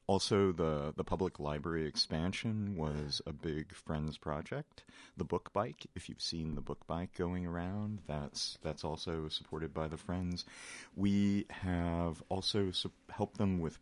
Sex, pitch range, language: male, 80-95 Hz, English